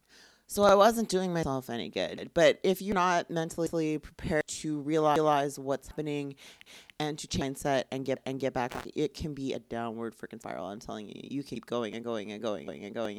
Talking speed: 215 wpm